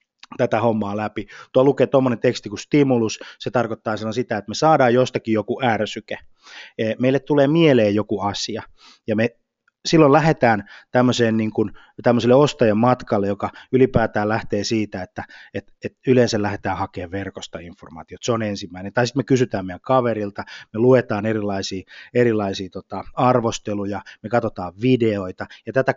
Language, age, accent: Finnish, 20-39, native